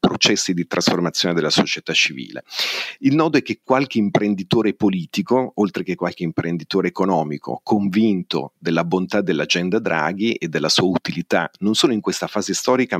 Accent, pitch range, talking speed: native, 90-110 Hz, 150 wpm